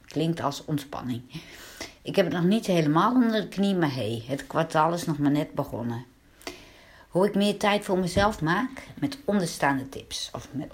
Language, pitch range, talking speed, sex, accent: Dutch, 140-195 Hz, 190 wpm, female, Dutch